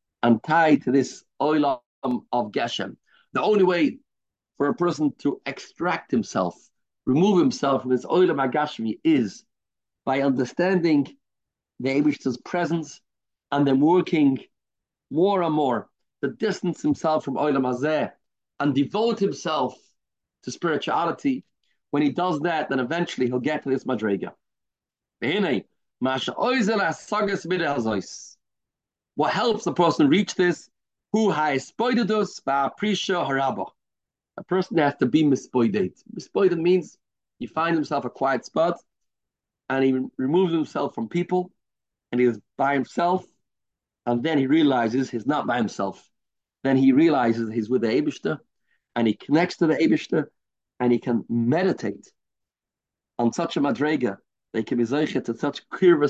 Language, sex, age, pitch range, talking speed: English, male, 40-59, 125-175 Hz, 135 wpm